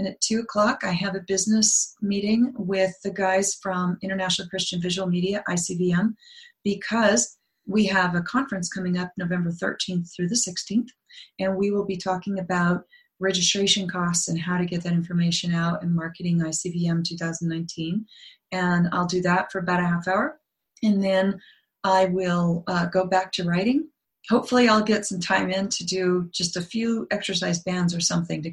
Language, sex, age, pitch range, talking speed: English, female, 30-49, 175-200 Hz, 170 wpm